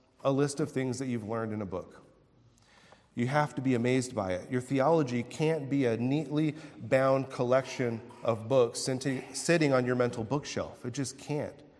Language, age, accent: English, 40-59, American